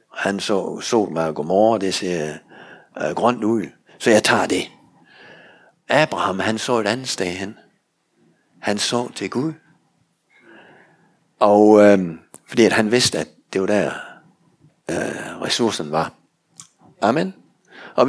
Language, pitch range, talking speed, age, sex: Danish, 95-125 Hz, 135 wpm, 60-79, male